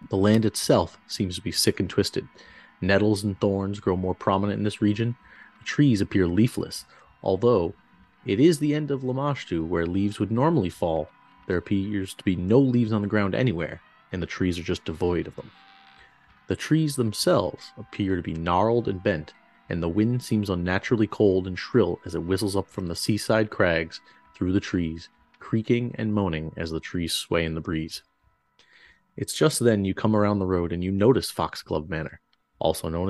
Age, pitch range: 30-49, 90-115 Hz